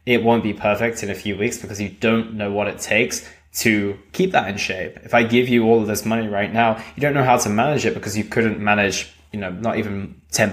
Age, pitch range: 10-29, 105-120 Hz